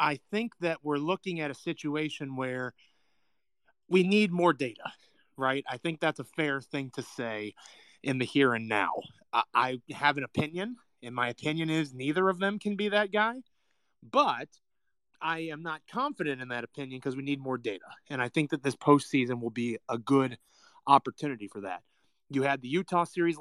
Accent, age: American, 30-49